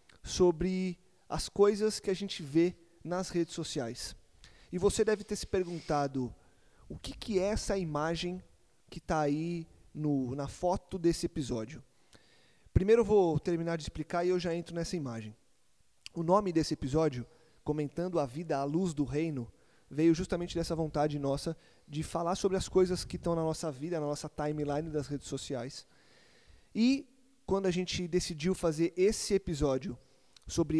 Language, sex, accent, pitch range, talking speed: Portuguese, male, Brazilian, 145-180 Hz, 160 wpm